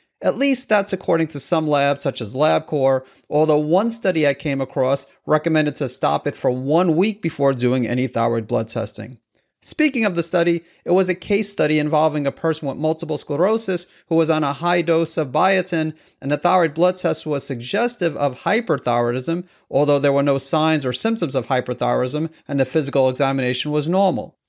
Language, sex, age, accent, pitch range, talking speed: English, male, 40-59, American, 135-175 Hz, 185 wpm